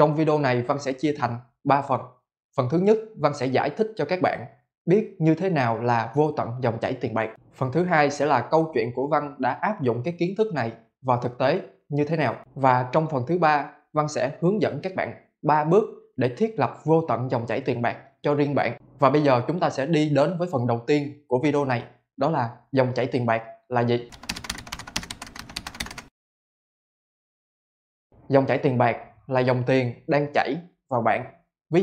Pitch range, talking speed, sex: 125-150 Hz, 210 wpm, male